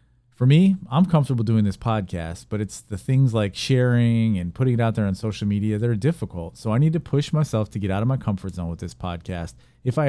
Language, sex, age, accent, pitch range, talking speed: English, male, 40-59, American, 105-135 Hz, 250 wpm